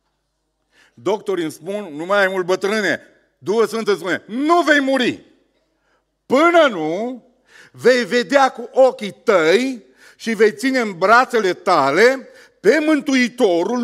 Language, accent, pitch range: Romanian, native, 180-230 Hz